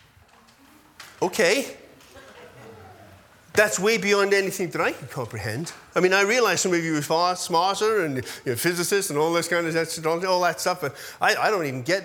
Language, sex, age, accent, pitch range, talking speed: English, male, 30-49, British, 150-220 Hz, 160 wpm